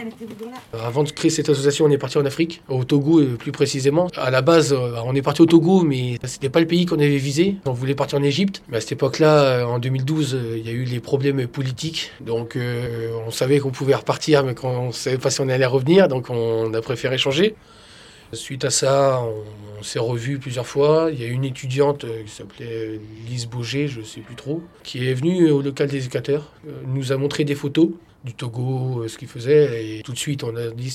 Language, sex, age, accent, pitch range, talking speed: French, male, 20-39, French, 120-145 Hz, 225 wpm